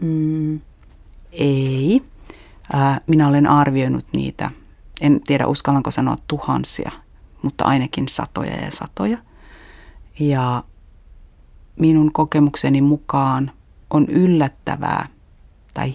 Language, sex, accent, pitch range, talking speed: Finnish, female, native, 125-155 Hz, 85 wpm